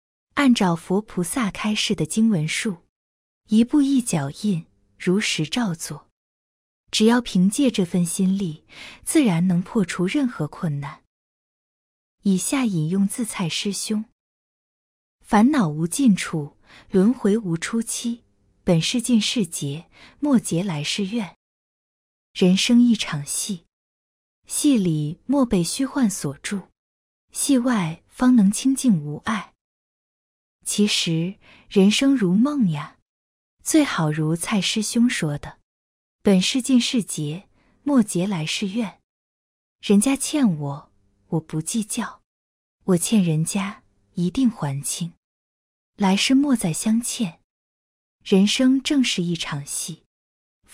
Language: Chinese